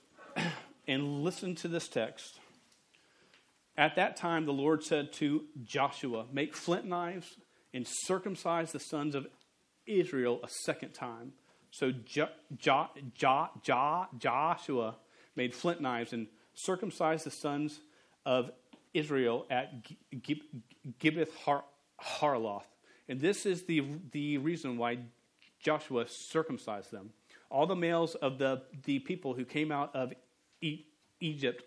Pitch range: 125-160 Hz